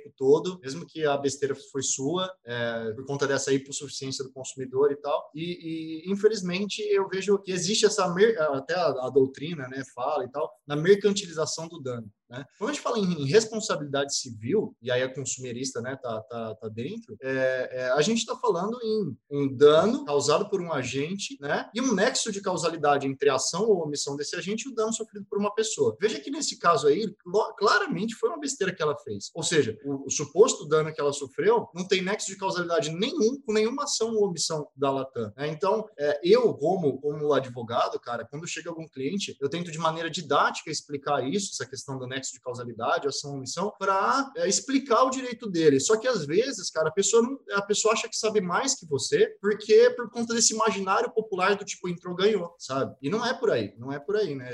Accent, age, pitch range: Brazilian, 20-39, 140-215 Hz